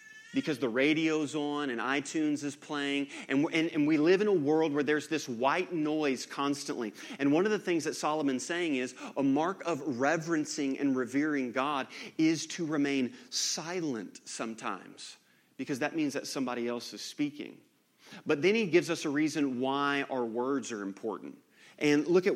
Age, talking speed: 30-49, 175 wpm